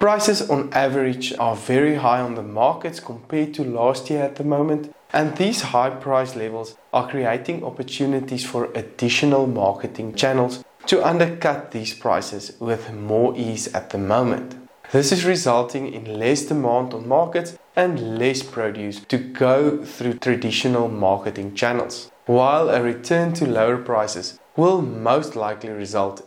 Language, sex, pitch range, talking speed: English, male, 110-145 Hz, 150 wpm